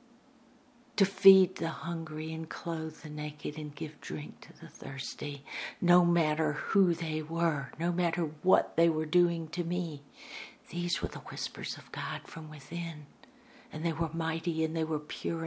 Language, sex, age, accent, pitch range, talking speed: English, female, 60-79, American, 160-255 Hz, 165 wpm